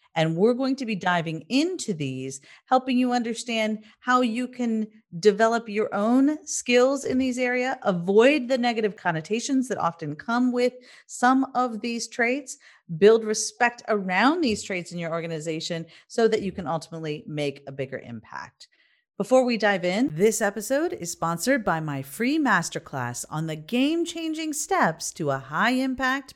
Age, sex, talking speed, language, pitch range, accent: 40-59, female, 155 wpm, English, 165-250 Hz, American